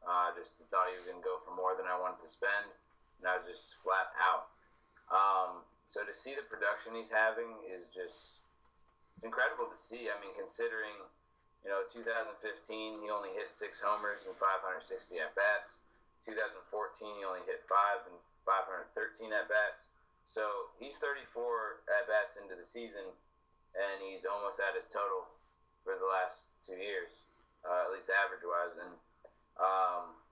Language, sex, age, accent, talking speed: English, male, 20-39, American, 160 wpm